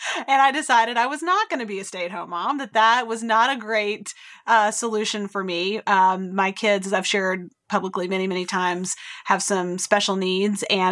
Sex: female